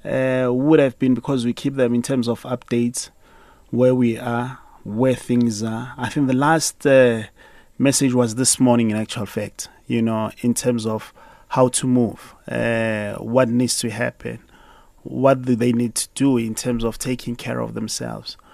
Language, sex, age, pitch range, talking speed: English, male, 30-49, 115-135 Hz, 180 wpm